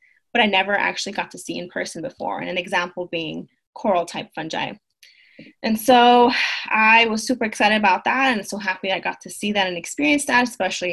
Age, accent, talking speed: 20-39, American, 205 wpm